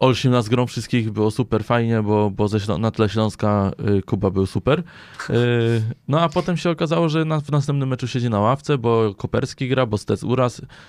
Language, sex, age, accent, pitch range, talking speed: Polish, male, 20-39, native, 105-135 Hz, 210 wpm